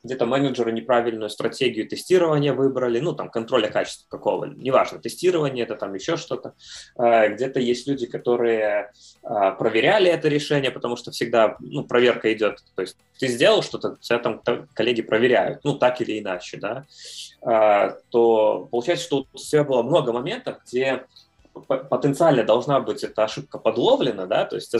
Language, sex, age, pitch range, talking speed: Russian, male, 20-39, 115-145 Hz, 150 wpm